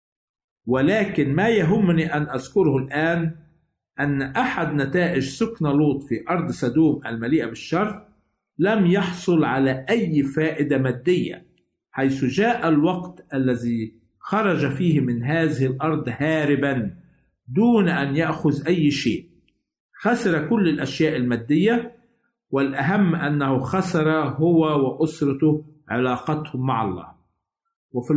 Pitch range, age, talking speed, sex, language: 135-175 Hz, 50-69, 105 wpm, male, Arabic